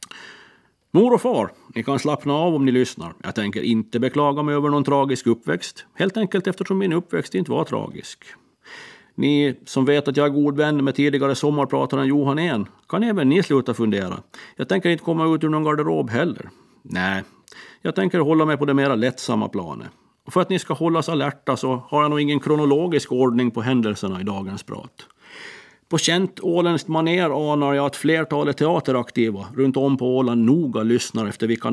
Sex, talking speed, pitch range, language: male, 190 wpm, 120-150 Hz, Swedish